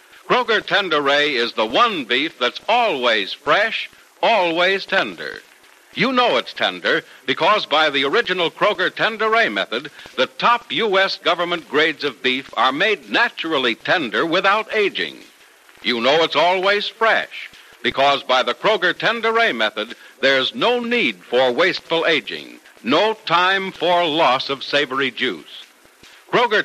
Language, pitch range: English, 135-220 Hz